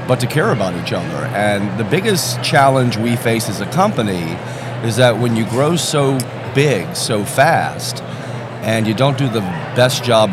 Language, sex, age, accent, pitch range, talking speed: English, male, 40-59, American, 100-125 Hz, 180 wpm